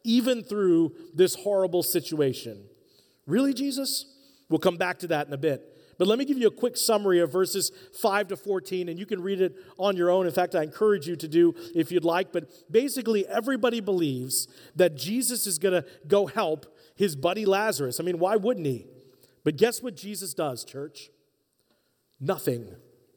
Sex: male